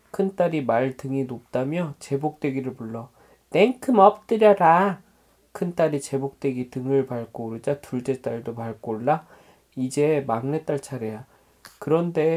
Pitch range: 130-155 Hz